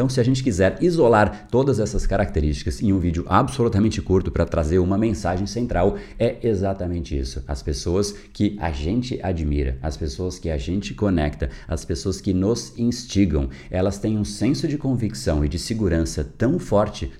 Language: Portuguese